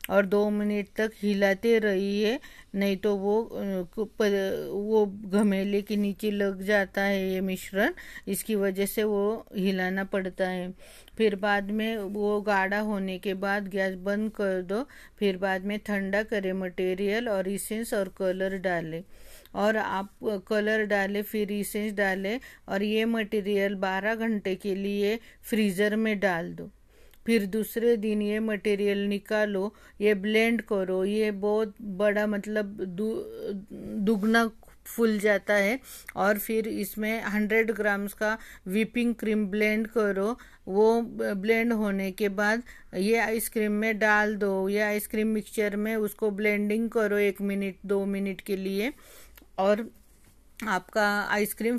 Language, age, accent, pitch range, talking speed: Hindi, 50-69, native, 195-220 Hz, 140 wpm